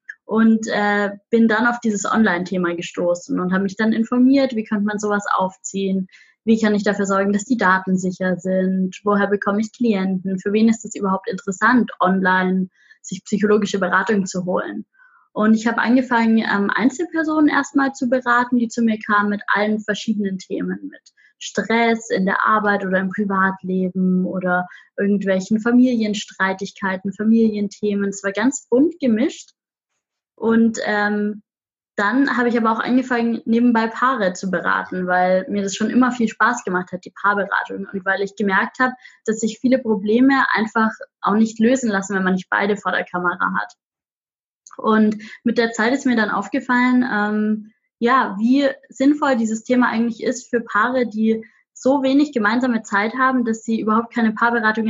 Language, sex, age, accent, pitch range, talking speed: German, female, 20-39, German, 200-240 Hz, 165 wpm